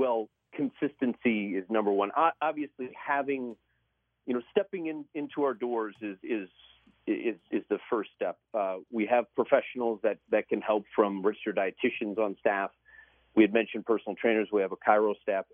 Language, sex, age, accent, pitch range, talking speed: English, male, 40-59, American, 110-140 Hz, 170 wpm